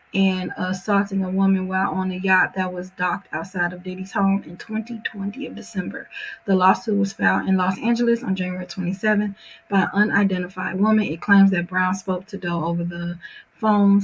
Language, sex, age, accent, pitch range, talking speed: English, female, 30-49, American, 180-200 Hz, 185 wpm